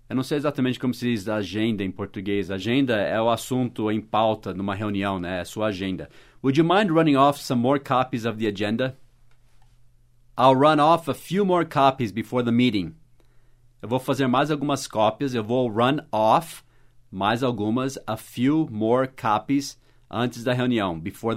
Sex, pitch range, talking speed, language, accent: male, 115-140 Hz, 175 wpm, English, Brazilian